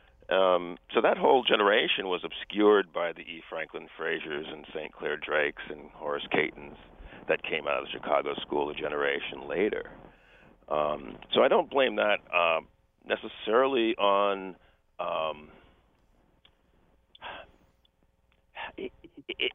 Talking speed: 125 wpm